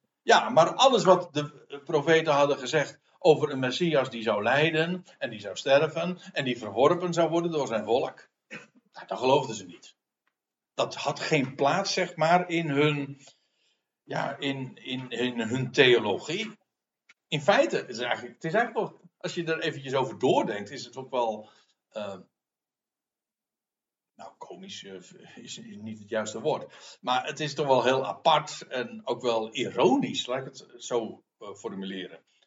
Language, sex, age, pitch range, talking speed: Dutch, male, 60-79, 125-180 Hz, 160 wpm